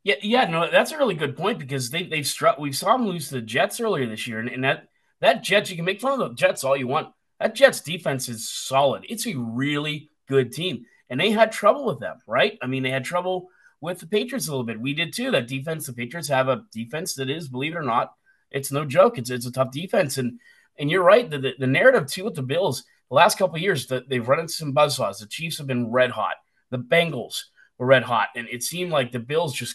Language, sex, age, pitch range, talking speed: English, male, 30-49, 125-160 Hz, 260 wpm